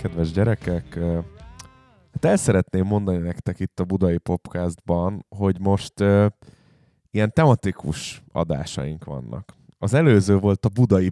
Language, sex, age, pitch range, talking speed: Hungarian, male, 20-39, 90-115 Hz, 120 wpm